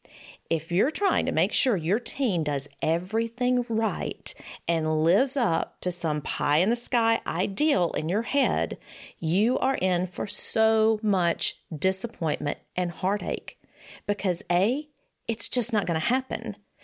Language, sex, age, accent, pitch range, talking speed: English, female, 40-59, American, 180-265 Hz, 145 wpm